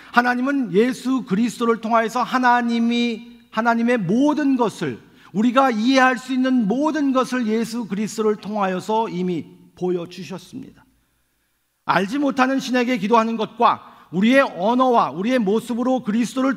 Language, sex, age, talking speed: English, male, 50-69, 105 wpm